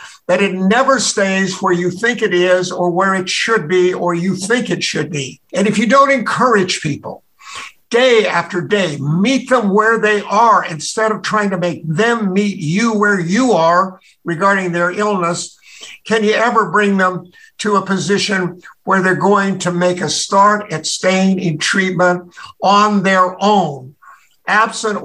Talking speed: 170 wpm